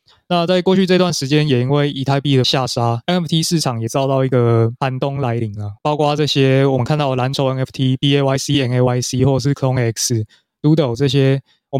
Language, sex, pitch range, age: Chinese, male, 125-150 Hz, 20-39